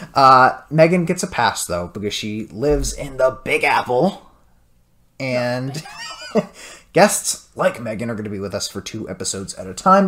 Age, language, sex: 20-39, English, male